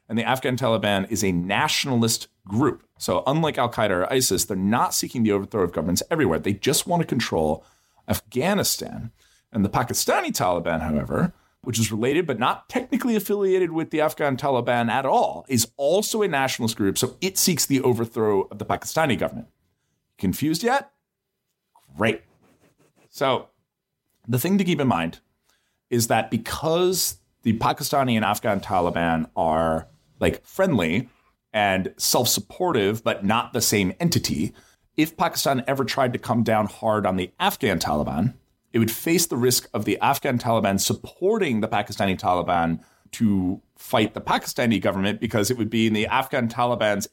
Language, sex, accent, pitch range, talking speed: English, male, American, 100-130 Hz, 160 wpm